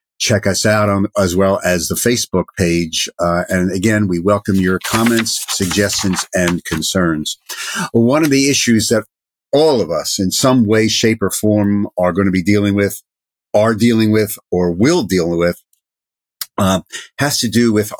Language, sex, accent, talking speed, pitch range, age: English, male, American, 175 wpm, 90-110 Hz, 50-69